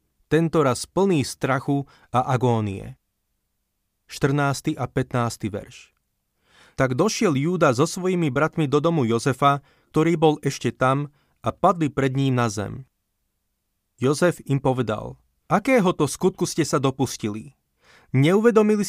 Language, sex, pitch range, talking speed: Slovak, male, 125-165 Hz, 120 wpm